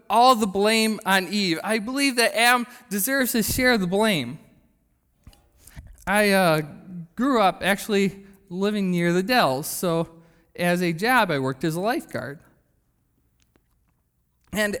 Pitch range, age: 165-240 Hz, 20-39